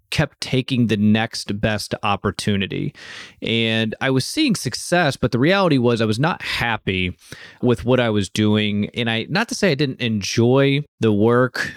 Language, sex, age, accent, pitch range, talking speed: English, male, 30-49, American, 105-135 Hz, 175 wpm